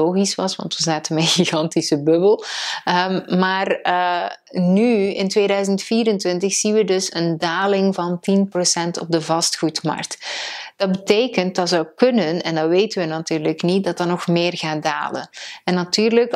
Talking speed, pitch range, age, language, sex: 160 wpm, 165-210 Hz, 30-49, Dutch, female